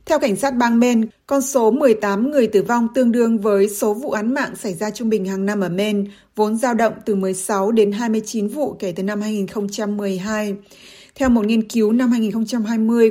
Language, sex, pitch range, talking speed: Vietnamese, female, 195-235 Hz, 200 wpm